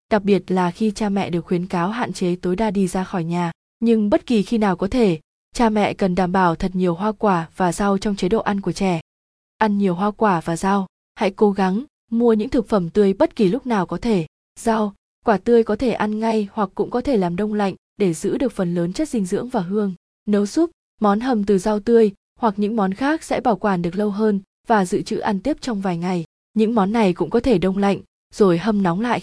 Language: Vietnamese